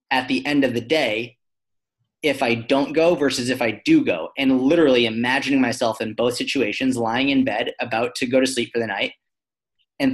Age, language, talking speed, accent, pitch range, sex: 30-49, Dutch, 200 wpm, American, 120-150 Hz, male